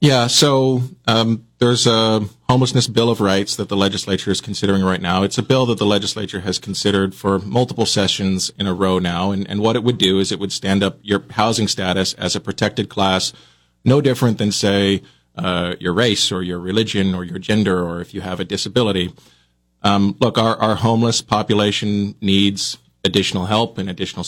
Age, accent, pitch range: 40-59, American, 95-115 Hz